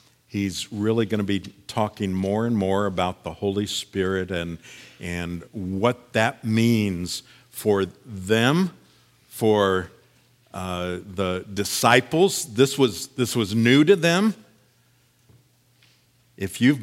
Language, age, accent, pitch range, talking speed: English, 50-69, American, 110-135 Hz, 115 wpm